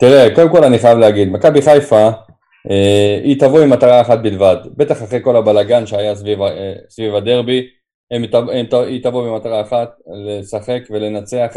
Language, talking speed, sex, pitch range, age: Hebrew, 155 wpm, male, 105-135 Hz, 20-39